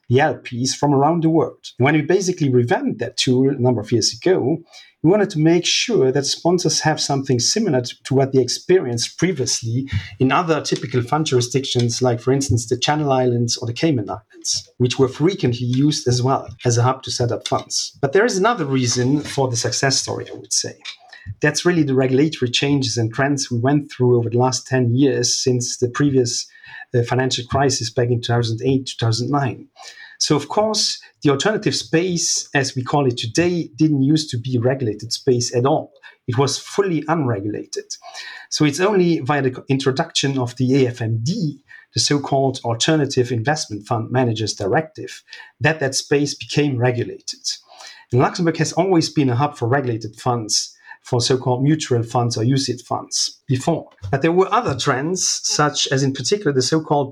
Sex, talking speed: male, 180 wpm